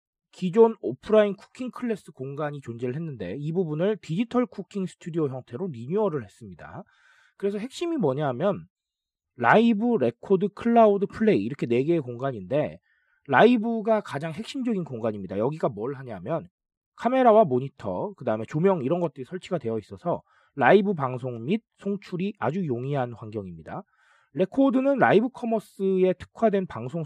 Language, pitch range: Korean, 135-220 Hz